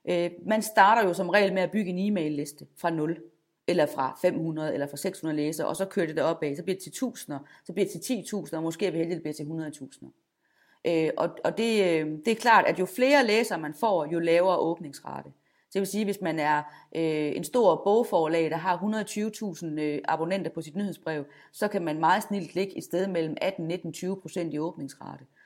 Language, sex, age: Danish, female, 30-49